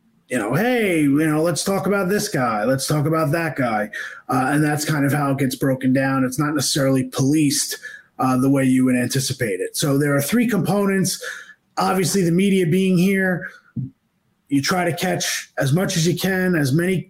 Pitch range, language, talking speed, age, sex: 145-185 Hz, English, 200 wpm, 30-49, male